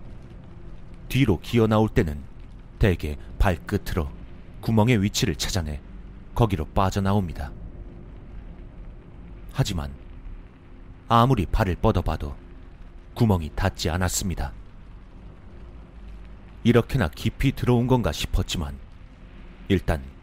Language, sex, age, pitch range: Korean, male, 30-49, 85-110 Hz